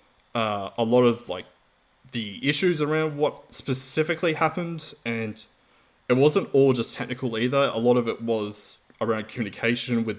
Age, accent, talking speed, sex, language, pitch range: 20-39, Australian, 155 wpm, male, English, 110-130 Hz